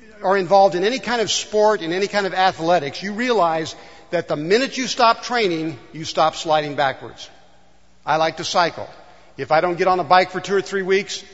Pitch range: 155-205 Hz